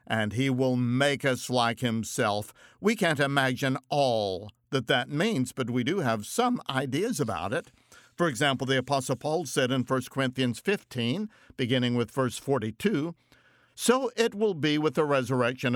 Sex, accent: male, American